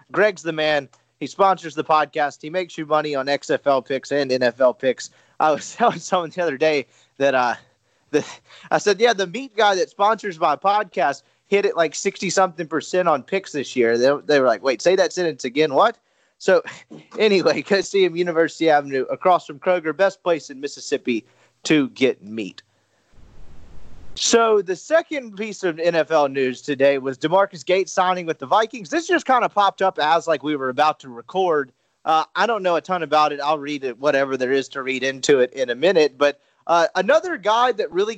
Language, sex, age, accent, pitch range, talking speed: English, male, 30-49, American, 140-195 Hz, 200 wpm